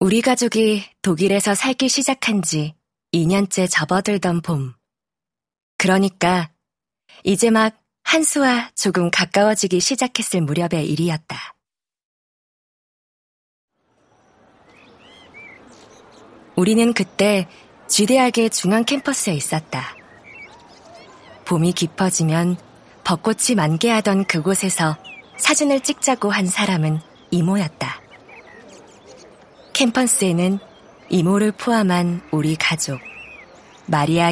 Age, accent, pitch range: 20-39, native, 170-220 Hz